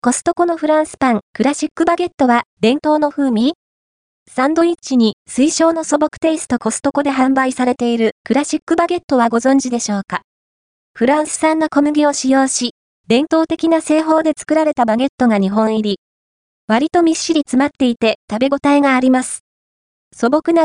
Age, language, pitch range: 20-39, Japanese, 235-305 Hz